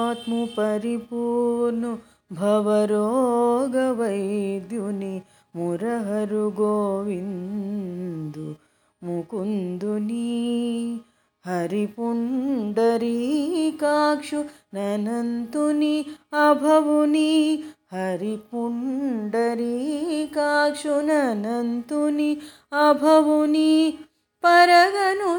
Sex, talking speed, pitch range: female, 35 wpm, 215-300 Hz